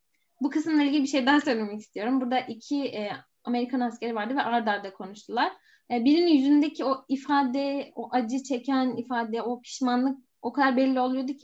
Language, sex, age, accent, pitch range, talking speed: Turkish, female, 10-29, native, 235-280 Hz, 180 wpm